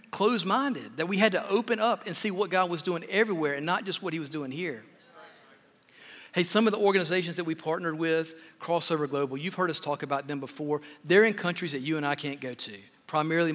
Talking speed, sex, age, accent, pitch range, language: 230 wpm, male, 50-69, American, 145-180 Hz, English